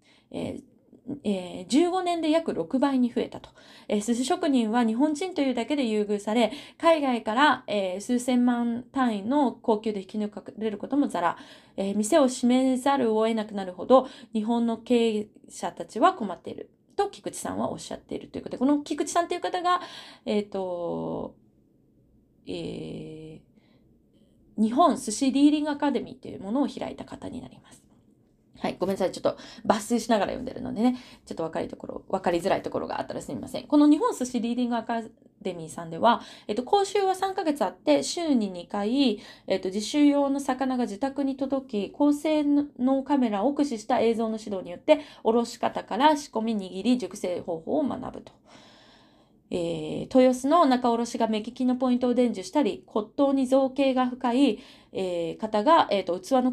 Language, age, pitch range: Japanese, 20-39, 215-280 Hz